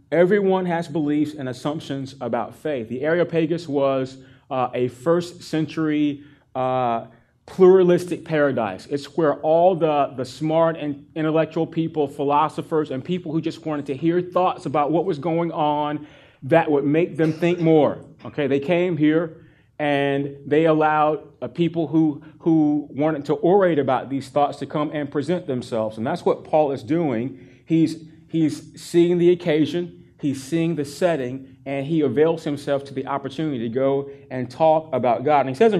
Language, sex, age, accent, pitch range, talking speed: English, male, 30-49, American, 130-160 Hz, 170 wpm